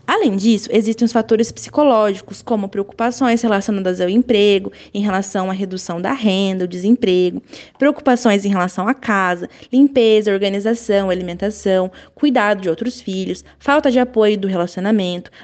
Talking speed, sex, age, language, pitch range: 135 wpm, female, 20-39, Portuguese, 210-275 Hz